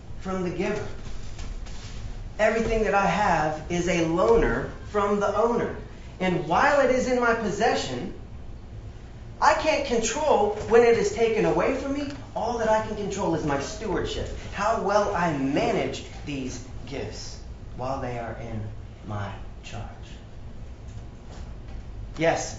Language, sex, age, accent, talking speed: English, male, 30-49, American, 135 wpm